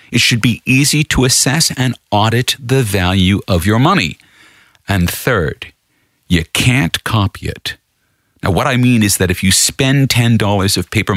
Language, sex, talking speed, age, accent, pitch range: English, male, 165 wpm, 50-69, American, 105-160 Hz